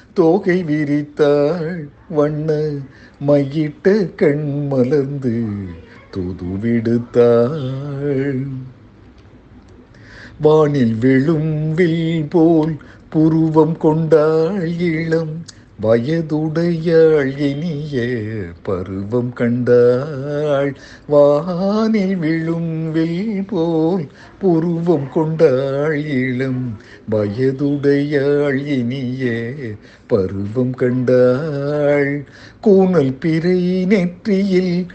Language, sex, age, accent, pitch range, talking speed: Tamil, male, 60-79, native, 145-220 Hz, 50 wpm